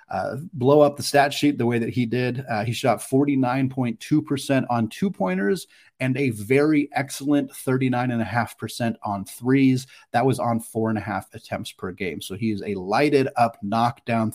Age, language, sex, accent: 30-49, English, male, American